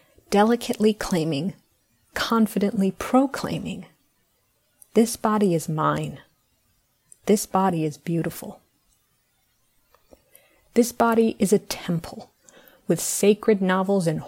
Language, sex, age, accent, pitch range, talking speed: English, female, 30-49, American, 170-215 Hz, 90 wpm